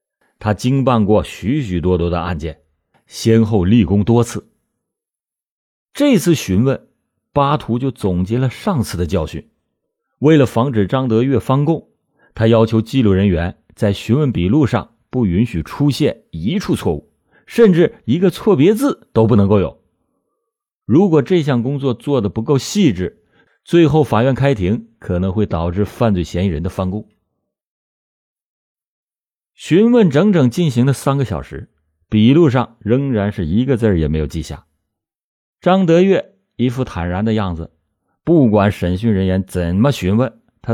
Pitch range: 95-135 Hz